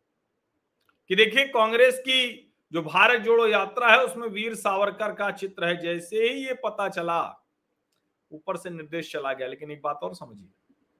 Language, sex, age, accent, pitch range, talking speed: Hindi, male, 50-69, native, 170-235 Hz, 165 wpm